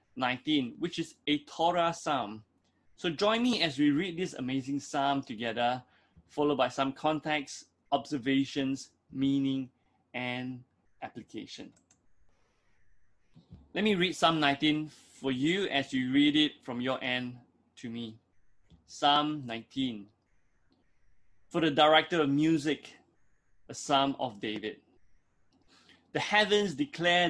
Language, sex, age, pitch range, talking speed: English, male, 20-39, 125-165 Hz, 120 wpm